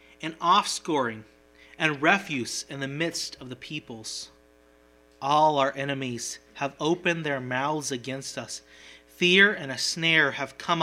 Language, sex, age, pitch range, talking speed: English, male, 30-49, 110-175 Hz, 140 wpm